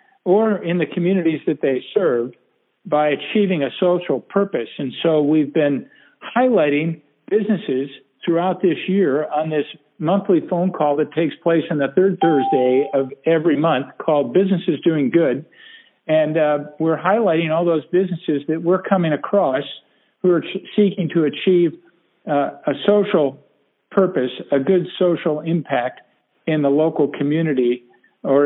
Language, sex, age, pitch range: English, male, 50-69, 140-180 Hz